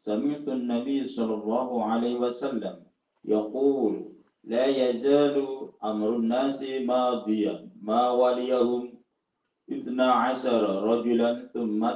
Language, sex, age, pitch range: Indonesian, male, 50-69, 115-145 Hz